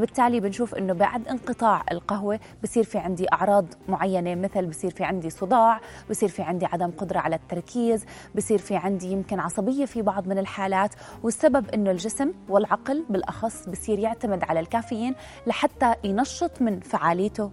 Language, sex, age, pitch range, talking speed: Arabic, female, 20-39, 185-230 Hz, 155 wpm